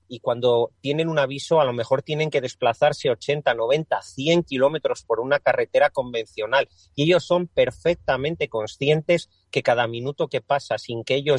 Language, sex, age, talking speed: Spanish, male, 40-59, 170 wpm